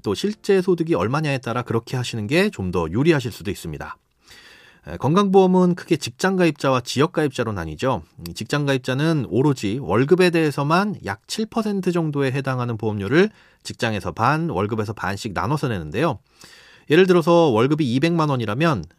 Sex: male